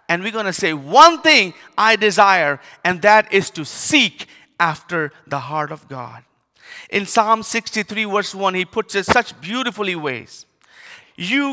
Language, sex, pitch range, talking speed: English, male, 150-210 Hz, 160 wpm